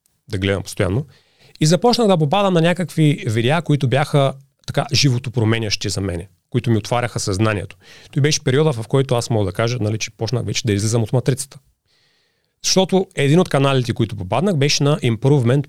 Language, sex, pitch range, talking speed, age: Bulgarian, male, 115-155 Hz, 180 wpm, 30-49